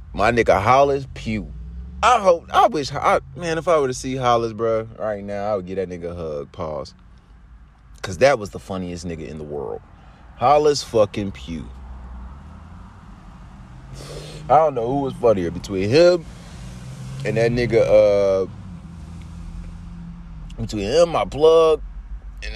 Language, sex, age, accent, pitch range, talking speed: English, male, 30-49, American, 80-115 Hz, 150 wpm